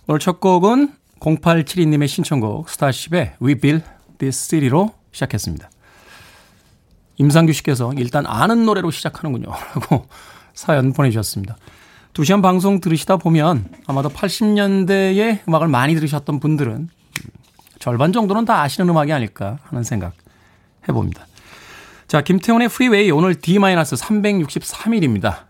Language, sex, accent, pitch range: Korean, male, native, 125-185 Hz